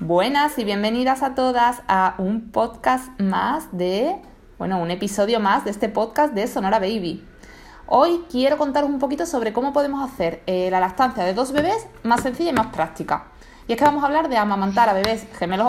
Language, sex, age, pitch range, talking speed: Spanish, female, 20-39, 190-260 Hz, 195 wpm